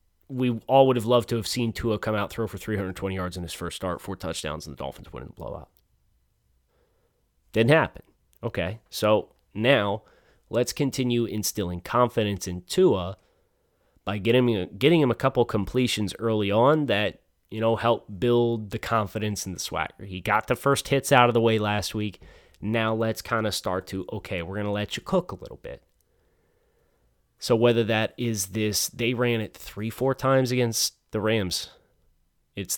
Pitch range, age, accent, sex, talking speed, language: 100-120 Hz, 30-49, American, male, 180 wpm, English